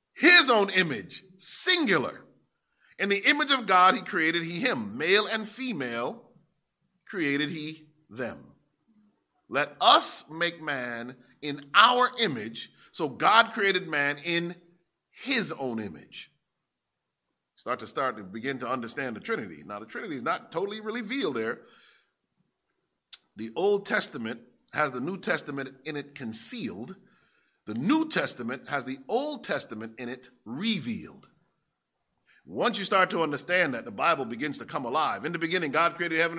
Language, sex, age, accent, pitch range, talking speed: English, male, 40-59, American, 160-215 Hz, 145 wpm